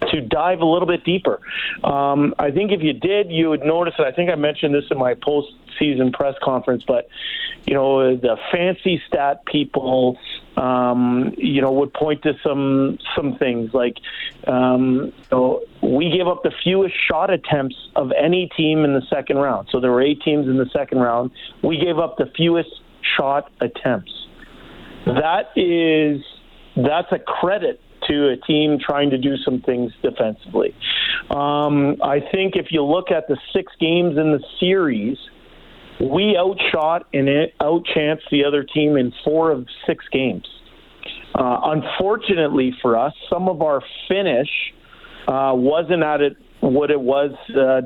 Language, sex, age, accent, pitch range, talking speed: English, male, 40-59, American, 135-165 Hz, 160 wpm